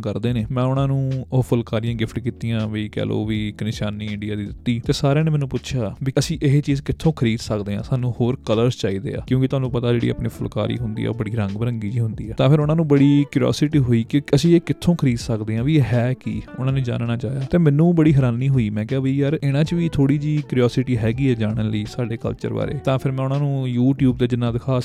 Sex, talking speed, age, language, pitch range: male, 250 wpm, 20-39, Punjabi, 115-135 Hz